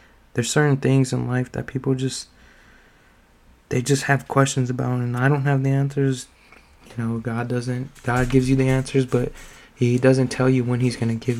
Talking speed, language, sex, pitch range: 200 wpm, English, male, 120-130 Hz